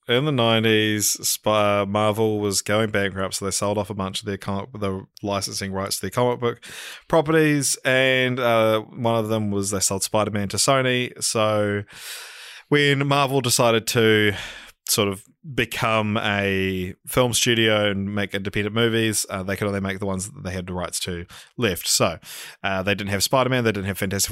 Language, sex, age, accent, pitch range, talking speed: English, male, 20-39, Australian, 100-125 Hz, 180 wpm